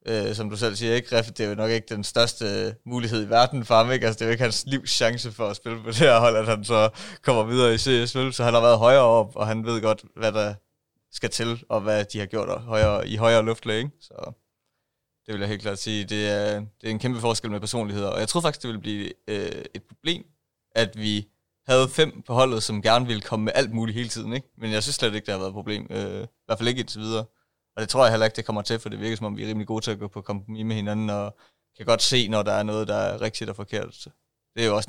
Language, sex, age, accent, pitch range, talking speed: Danish, male, 20-39, native, 105-115 Hz, 290 wpm